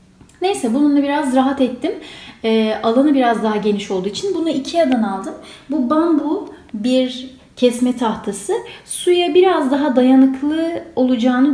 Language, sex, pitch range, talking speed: Turkish, female, 225-280 Hz, 130 wpm